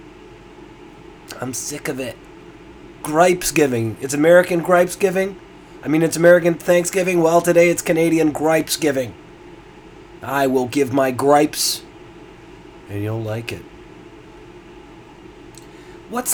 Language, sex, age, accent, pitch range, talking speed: English, male, 30-49, American, 125-180 Hz, 115 wpm